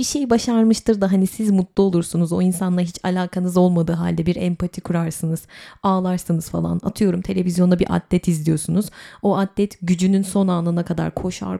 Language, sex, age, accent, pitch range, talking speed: Turkish, female, 30-49, native, 170-210 Hz, 160 wpm